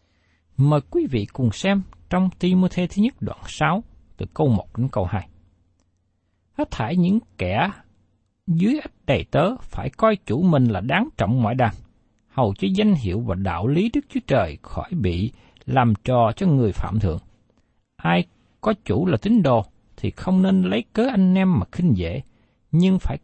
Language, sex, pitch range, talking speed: Vietnamese, male, 105-175 Hz, 185 wpm